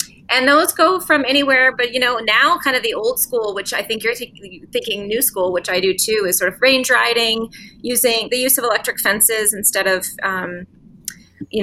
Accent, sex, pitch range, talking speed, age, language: American, female, 170-210 Hz, 210 wpm, 20-39, English